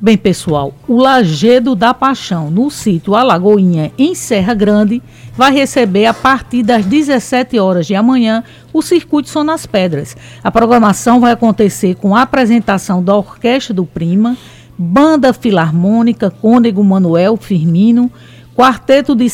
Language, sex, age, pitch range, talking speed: Portuguese, female, 50-69, 190-245 Hz, 135 wpm